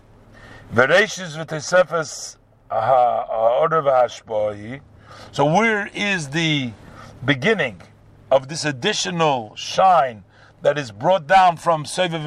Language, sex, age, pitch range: English, male, 50-69, 125-185 Hz